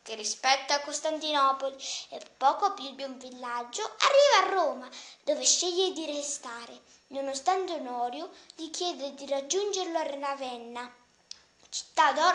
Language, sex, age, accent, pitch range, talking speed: English, female, 20-39, Italian, 265-310 Hz, 120 wpm